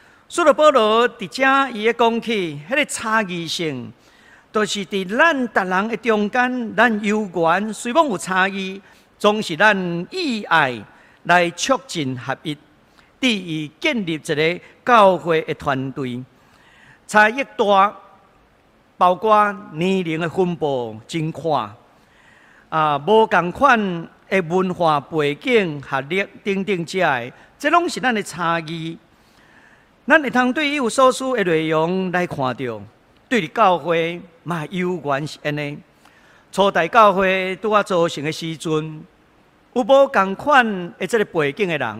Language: Chinese